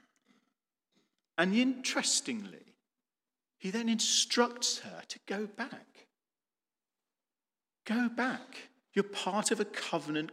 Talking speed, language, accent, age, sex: 95 wpm, English, British, 40-59, male